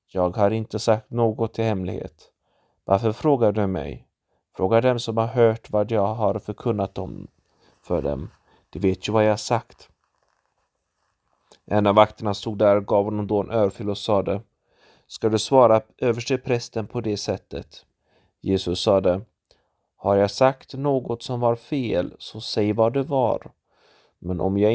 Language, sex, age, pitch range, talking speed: Swedish, male, 30-49, 95-115 Hz, 155 wpm